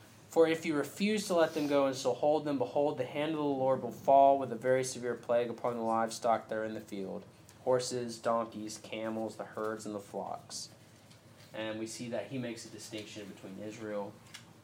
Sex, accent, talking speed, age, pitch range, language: male, American, 205 wpm, 20-39, 110-135 Hz, English